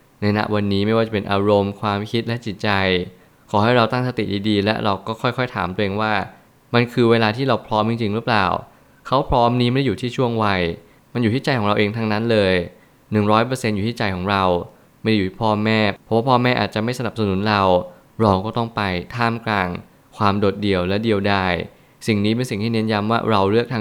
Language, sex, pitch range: Thai, male, 100-120 Hz